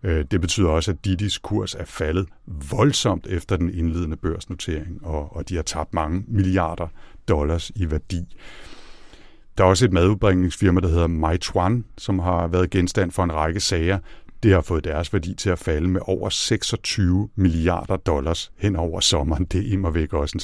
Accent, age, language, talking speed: native, 60-79, Danish, 175 wpm